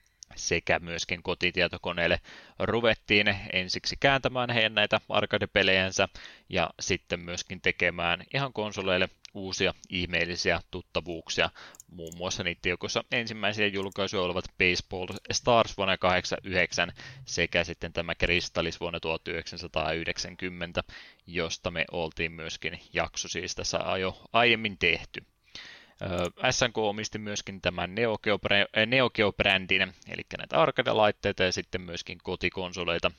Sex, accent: male, native